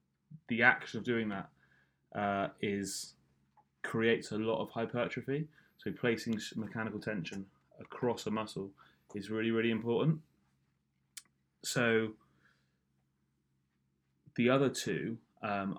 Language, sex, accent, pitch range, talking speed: English, male, British, 95-115 Hz, 105 wpm